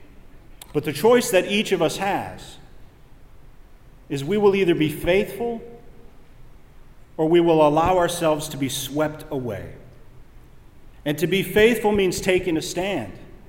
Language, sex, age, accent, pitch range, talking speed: English, male, 40-59, American, 135-180 Hz, 140 wpm